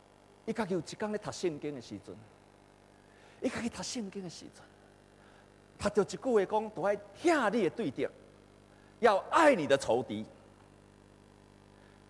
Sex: male